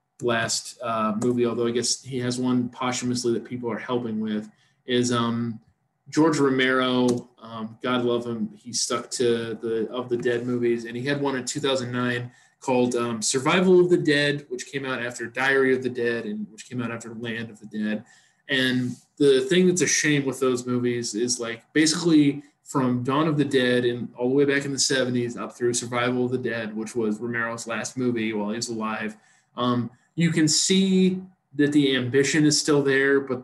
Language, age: English, 20-39